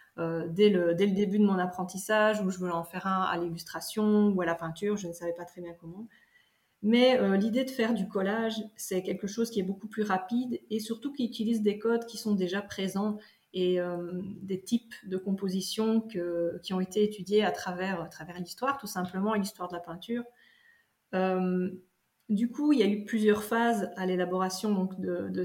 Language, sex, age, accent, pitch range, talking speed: French, female, 30-49, French, 185-220 Hz, 210 wpm